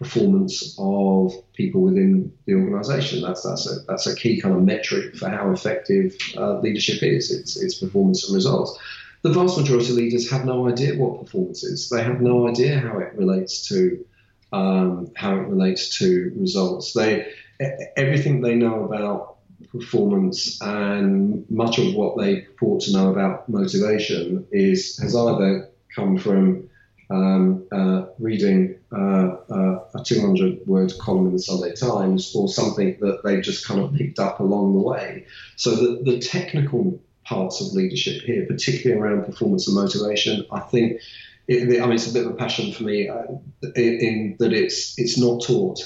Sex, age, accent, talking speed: male, 40-59, British, 175 wpm